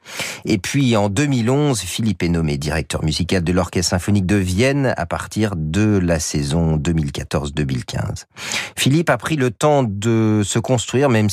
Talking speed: 155 wpm